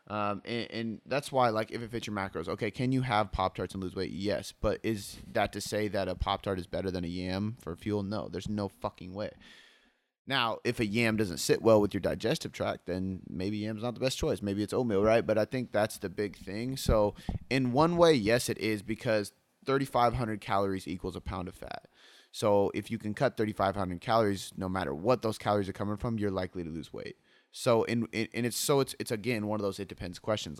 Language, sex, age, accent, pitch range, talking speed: English, male, 30-49, American, 95-115 Hz, 230 wpm